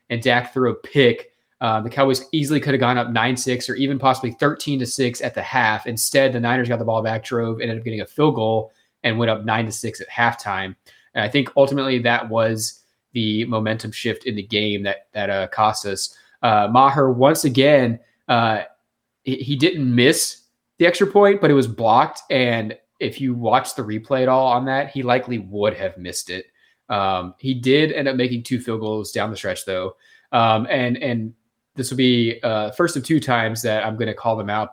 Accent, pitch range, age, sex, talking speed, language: American, 110-135 Hz, 20-39, male, 205 wpm, English